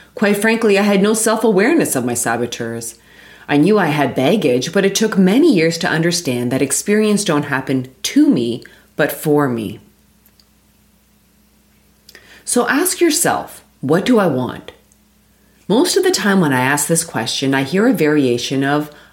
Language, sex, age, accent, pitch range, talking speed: English, female, 30-49, American, 135-220 Hz, 160 wpm